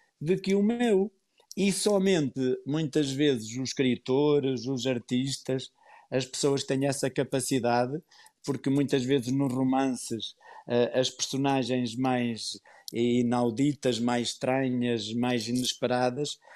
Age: 50-69